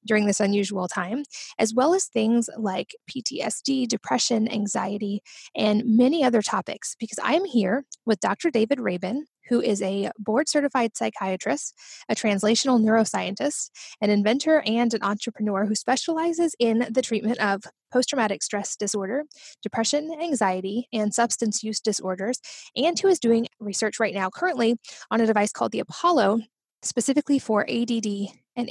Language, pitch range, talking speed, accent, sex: English, 205-250 Hz, 145 wpm, American, female